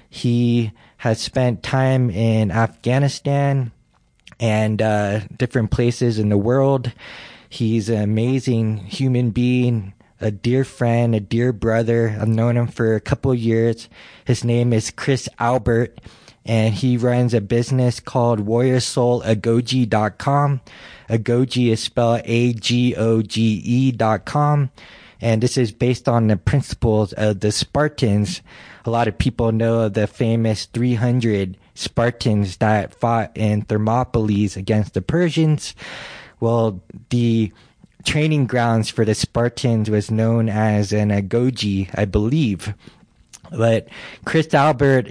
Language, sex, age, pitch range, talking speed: English, male, 20-39, 110-125 Hz, 125 wpm